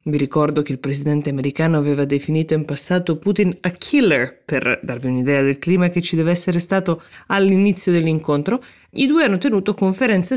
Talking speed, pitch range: 175 wpm, 145-175 Hz